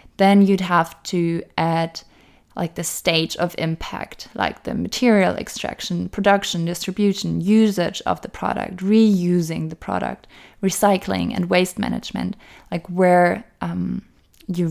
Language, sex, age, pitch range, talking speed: English, female, 20-39, 165-210 Hz, 125 wpm